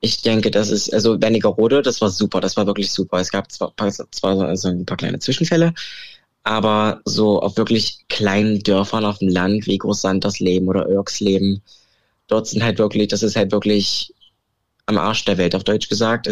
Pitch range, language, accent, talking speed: 100-110 Hz, German, German, 190 wpm